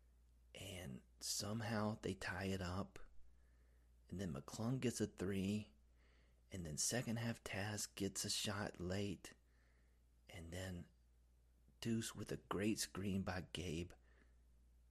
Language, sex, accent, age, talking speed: English, male, American, 30-49, 115 wpm